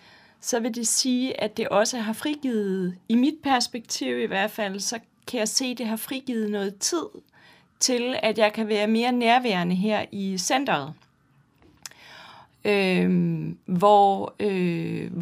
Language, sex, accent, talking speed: Danish, female, native, 150 wpm